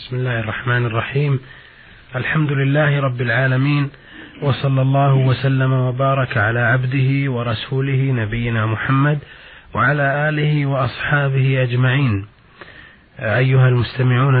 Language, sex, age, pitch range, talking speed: Arabic, male, 30-49, 125-140 Hz, 95 wpm